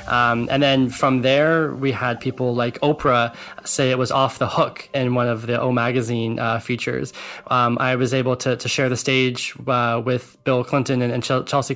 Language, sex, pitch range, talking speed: English, male, 120-140 Hz, 205 wpm